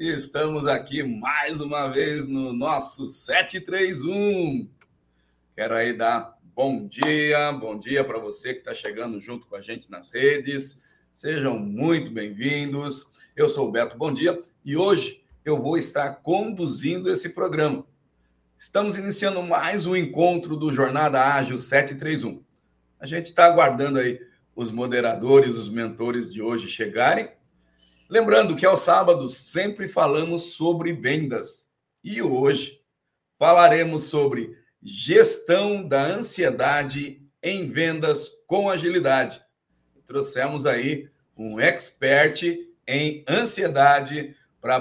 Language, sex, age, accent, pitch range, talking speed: Portuguese, male, 50-69, Brazilian, 125-175 Hz, 120 wpm